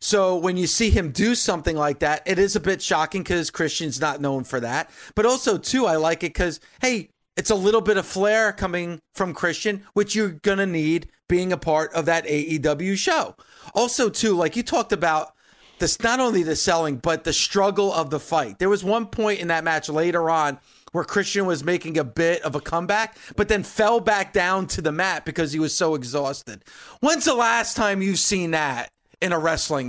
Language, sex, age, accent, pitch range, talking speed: English, male, 30-49, American, 155-205 Hz, 215 wpm